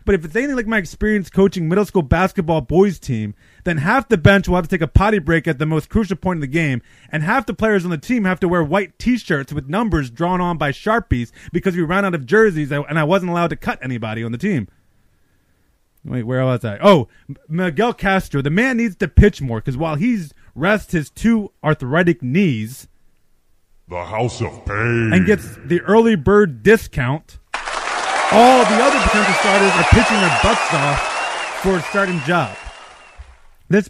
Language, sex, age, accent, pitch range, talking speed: English, male, 30-49, American, 140-195 Hz, 200 wpm